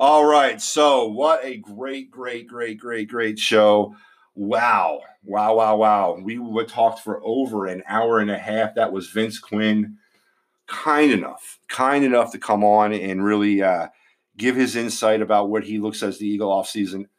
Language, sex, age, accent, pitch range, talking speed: English, male, 40-59, American, 100-135 Hz, 175 wpm